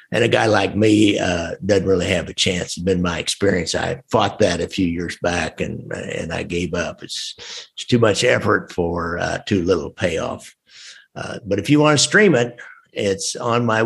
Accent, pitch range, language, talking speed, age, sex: American, 90-110 Hz, English, 210 wpm, 60-79, male